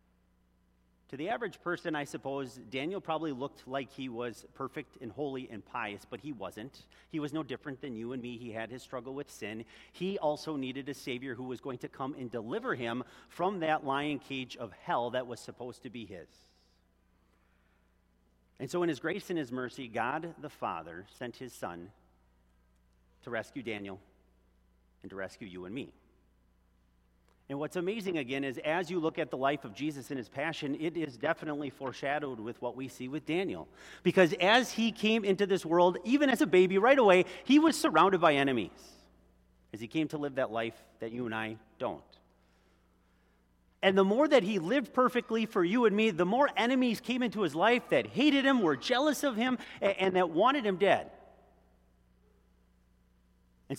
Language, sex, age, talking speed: English, male, 40-59, 190 wpm